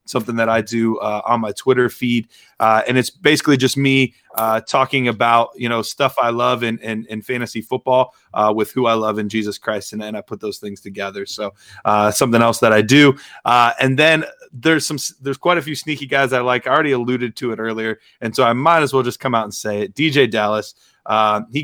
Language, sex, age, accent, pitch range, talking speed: English, male, 30-49, American, 115-140 Hz, 235 wpm